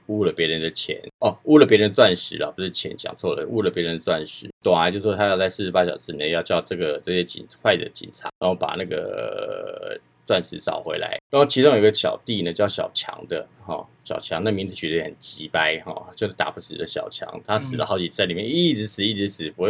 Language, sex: Chinese, male